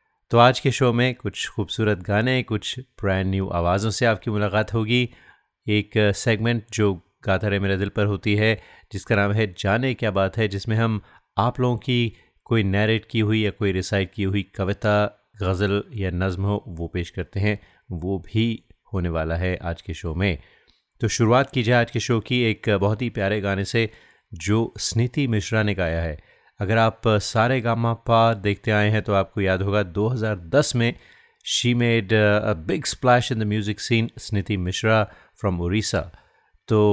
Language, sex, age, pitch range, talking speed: Hindi, male, 30-49, 95-115 Hz, 180 wpm